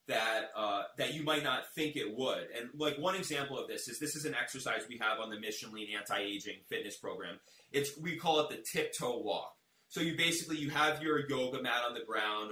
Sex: male